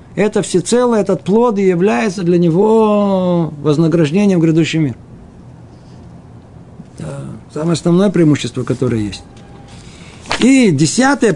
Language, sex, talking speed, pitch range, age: Russian, male, 105 wpm, 135-200 Hz, 50-69